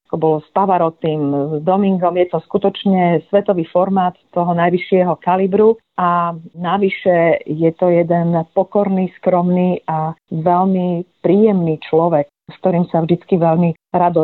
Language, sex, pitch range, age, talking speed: Slovak, female, 165-195 Hz, 40-59, 130 wpm